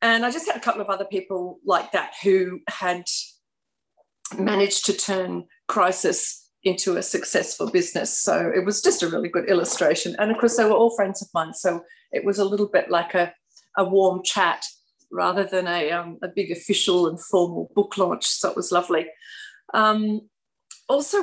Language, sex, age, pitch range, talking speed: English, female, 40-59, 185-225 Hz, 185 wpm